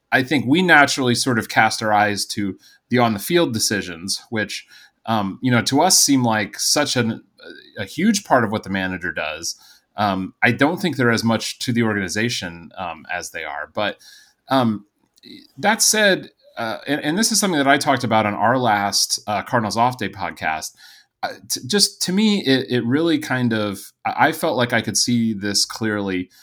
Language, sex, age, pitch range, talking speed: English, male, 30-49, 100-130 Hz, 195 wpm